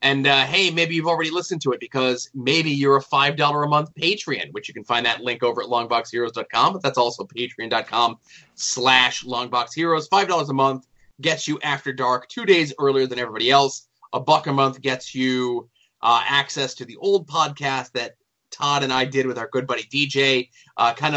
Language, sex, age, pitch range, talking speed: English, male, 20-39, 120-145 Hz, 195 wpm